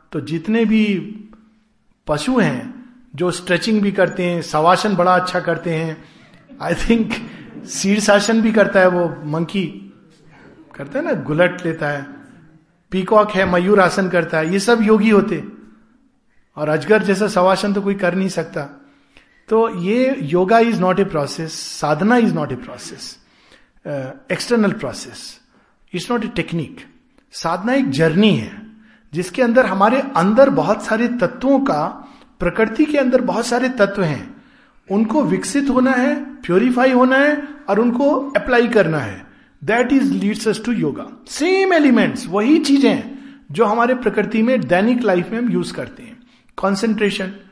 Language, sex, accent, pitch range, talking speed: Hindi, male, native, 180-245 Hz, 150 wpm